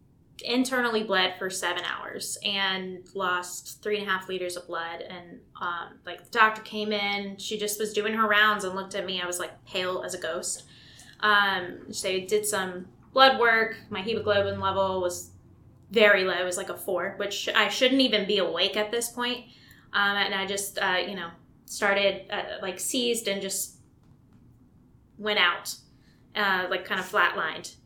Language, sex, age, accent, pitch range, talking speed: English, female, 10-29, American, 185-210 Hz, 185 wpm